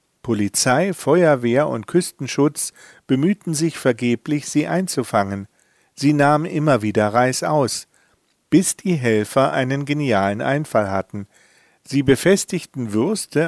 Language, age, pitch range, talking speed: German, 50-69, 115-155 Hz, 110 wpm